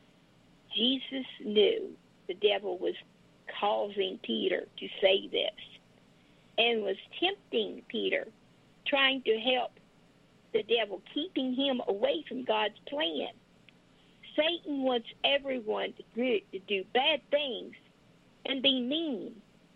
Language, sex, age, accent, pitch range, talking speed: English, female, 50-69, American, 220-325 Hz, 105 wpm